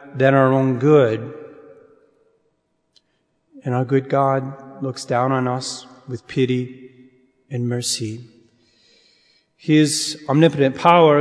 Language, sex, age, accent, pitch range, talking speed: English, male, 30-49, American, 130-155 Hz, 100 wpm